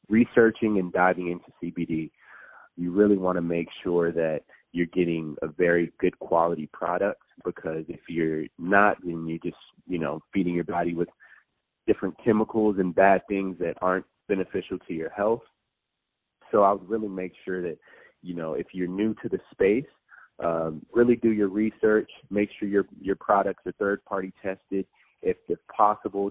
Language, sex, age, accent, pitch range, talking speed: English, male, 30-49, American, 85-100 Hz, 170 wpm